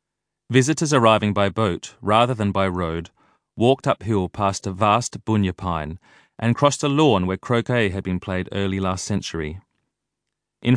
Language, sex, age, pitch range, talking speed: English, male, 30-49, 95-120 Hz, 155 wpm